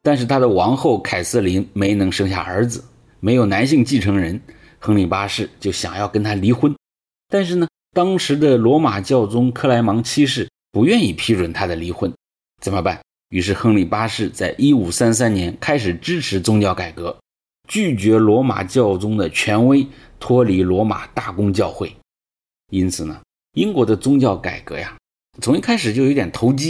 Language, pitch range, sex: English, 95-125 Hz, male